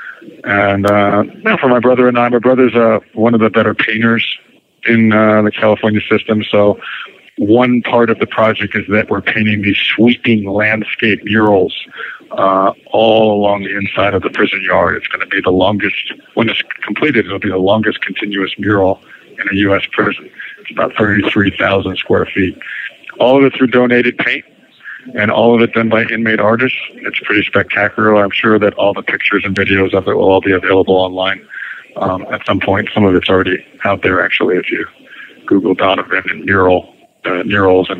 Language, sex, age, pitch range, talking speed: English, male, 50-69, 100-115 Hz, 190 wpm